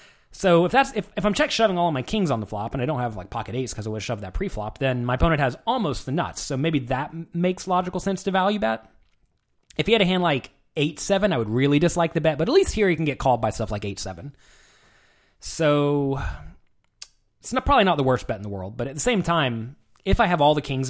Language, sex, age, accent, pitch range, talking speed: English, male, 20-39, American, 110-160 Hz, 265 wpm